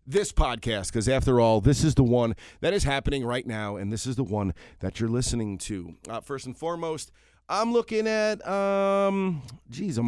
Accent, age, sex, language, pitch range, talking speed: American, 30-49, male, English, 105-150 Hz, 195 wpm